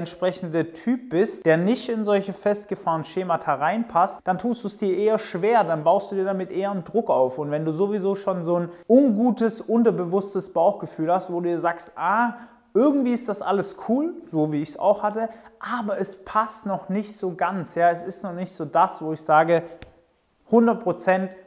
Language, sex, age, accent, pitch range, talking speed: German, male, 30-49, German, 160-200 Hz, 200 wpm